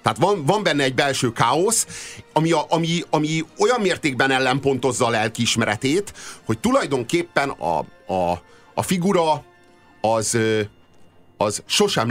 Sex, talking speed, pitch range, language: male, 125 wpm, 110-160 Hz, Hungarian